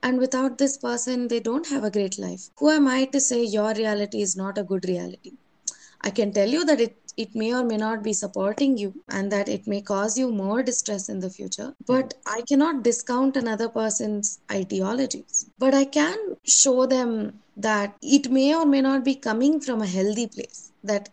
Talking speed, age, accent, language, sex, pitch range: 205 wpm, 20-39, Indian, English, female, 210-265 Hz